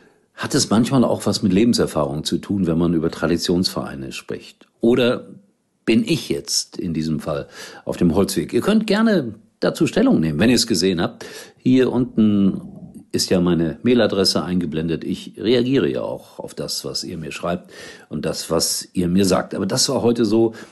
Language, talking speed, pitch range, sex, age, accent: German, 180 wpm, 90-130 Hz, male, 50-69, German